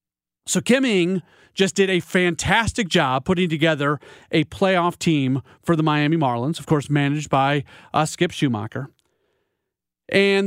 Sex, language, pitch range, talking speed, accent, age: male, English, 155-195 Hz, 145 wpm, American, 40-59